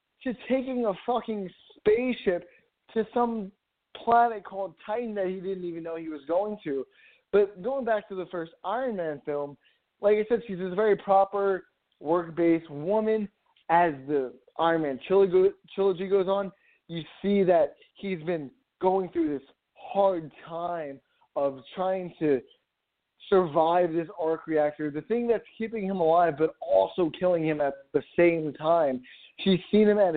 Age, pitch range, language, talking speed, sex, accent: 20-39, 155-205 Hz, English, 160 wpm, male, American